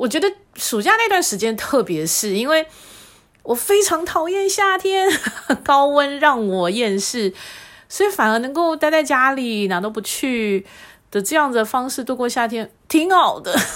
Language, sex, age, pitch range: Chinese, female, 30-49, 185-255 Hz